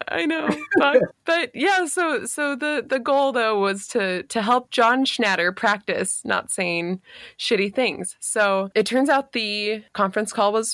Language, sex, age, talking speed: English, female, 20-39, 170 wpm